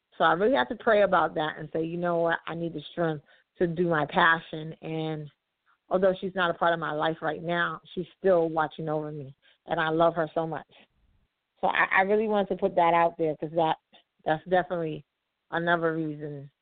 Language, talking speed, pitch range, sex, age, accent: English, 215 wpm, 160-190 Hz, female, 40-59, American